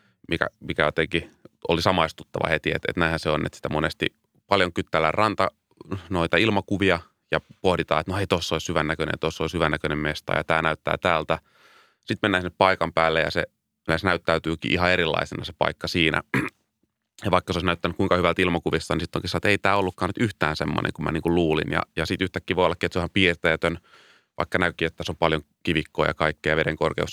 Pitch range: 80-95 Hz